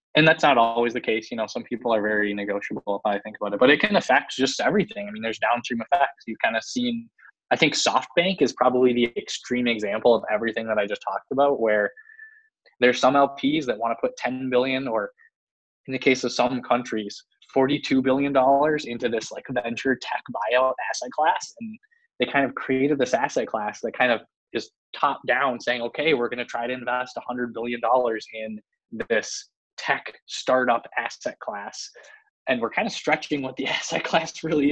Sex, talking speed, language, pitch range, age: male, 200 wpm, English, 110-140 Hz, 20-39